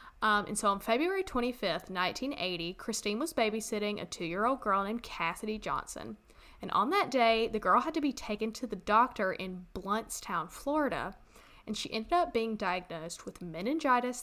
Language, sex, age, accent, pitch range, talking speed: English, female, 10-29, American, 195-255 Hz, 170 wpm